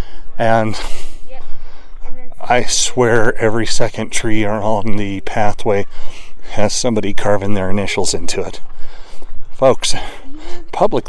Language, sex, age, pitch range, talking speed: English, male, 30-49, 105-130 Hz, 95 wpm